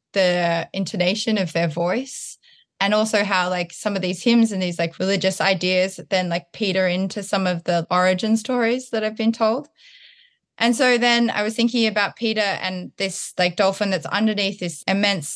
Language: English